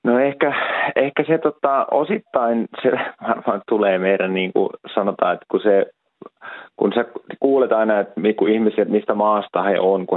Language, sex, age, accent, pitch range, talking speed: Finnish, male, 30-49, native, 95-110 Hz, 170 wpm